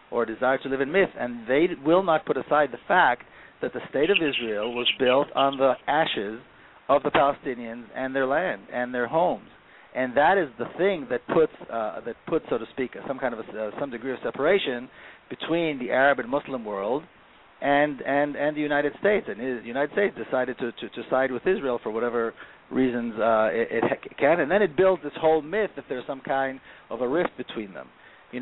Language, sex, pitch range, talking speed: English, male, 120-150 Hz, 220 wpm